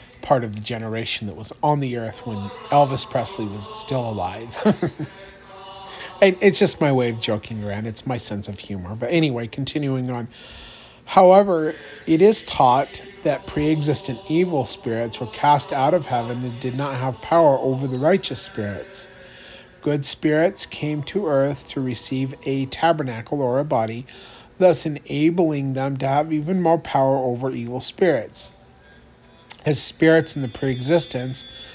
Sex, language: male, English